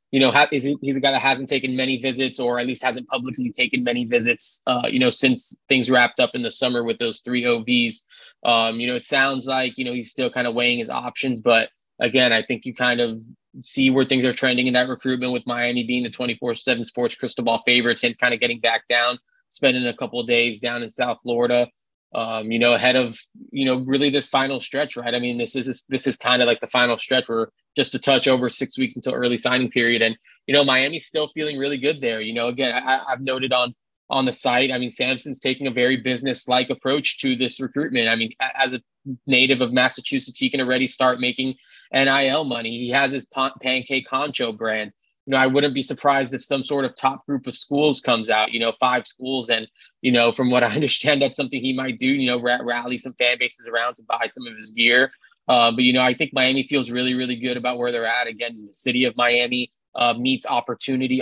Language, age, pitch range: English, 20-39, 120-135 Hz